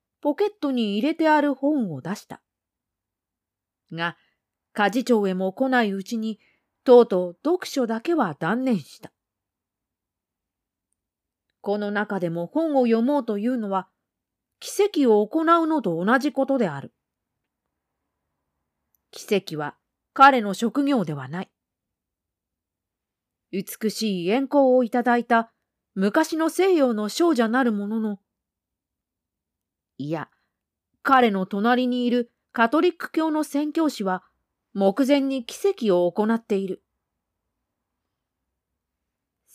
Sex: female